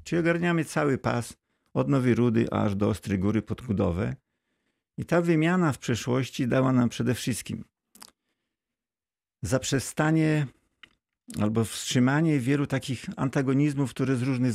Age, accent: 50-69, native